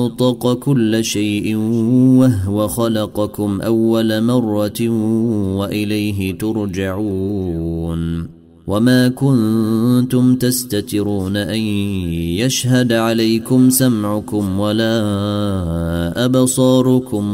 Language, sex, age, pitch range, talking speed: Arabic, male, 30-49, 100-115 Hz, 60 wpm